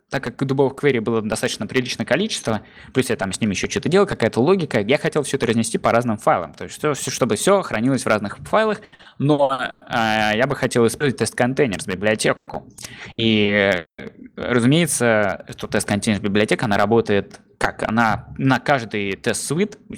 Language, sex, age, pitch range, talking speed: Russian, male, 20-39, 110-145 Hz, 180 wpm